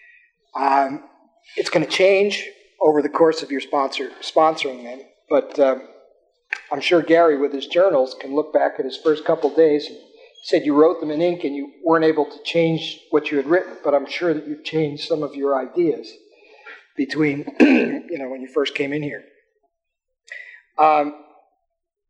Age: 40-59